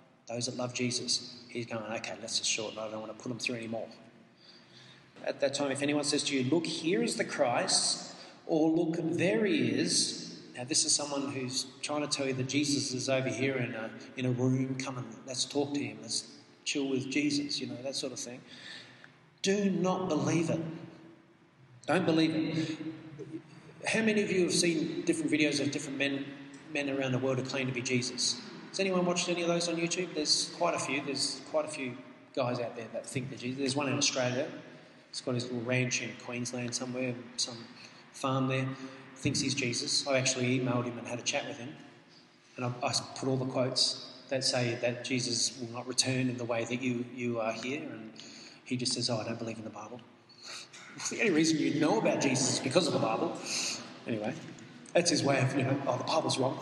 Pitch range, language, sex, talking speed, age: 125-150 Hz, English, male, 220 wpm, 30-49